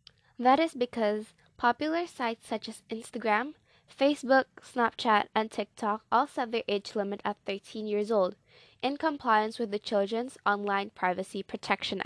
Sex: female